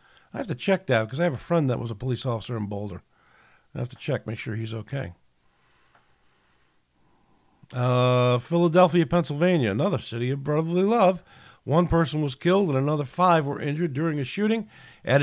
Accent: American